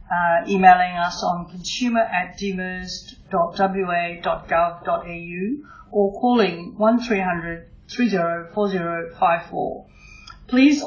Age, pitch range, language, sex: 40-59, 170-195 Hz, English, female